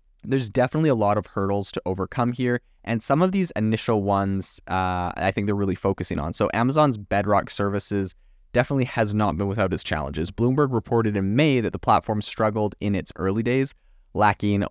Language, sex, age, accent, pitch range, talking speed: English, male, 20-39, American, 95-110 Hz, 190 wpm